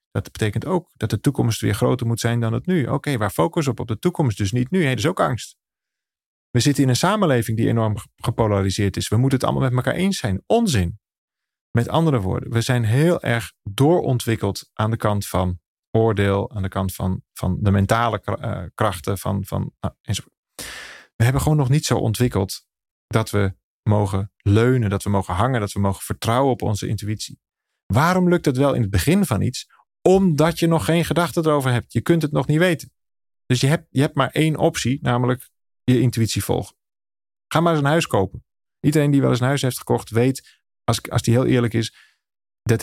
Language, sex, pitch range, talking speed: Dutch, male, 105-135 Hz, 210 wpm